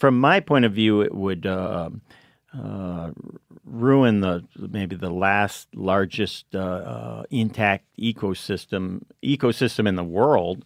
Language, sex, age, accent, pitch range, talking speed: English, male, 50-69, American, 95-115 Hz, 135 wpm